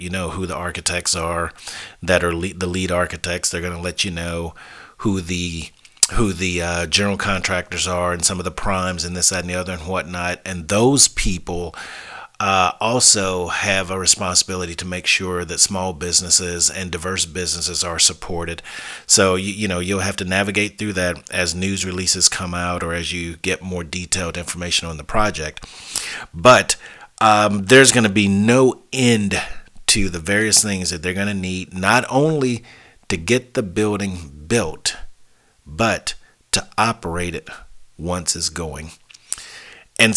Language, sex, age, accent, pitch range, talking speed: English, male, 40-59, American, 90-105 Hz, 170 wpm